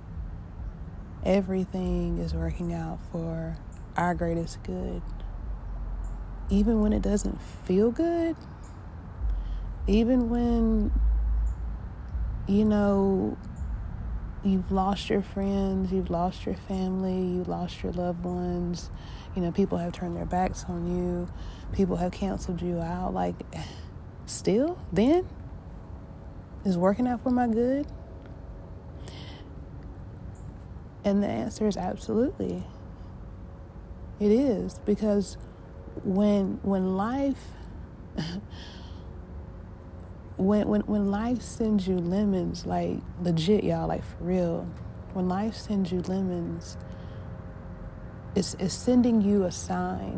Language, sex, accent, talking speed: English, female, American, 105 wpm